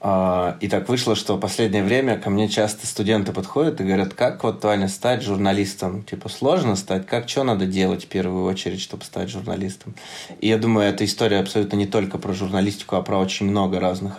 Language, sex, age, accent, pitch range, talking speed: Russian, male, 20-39, native, 95-105 Hz, 195 wpm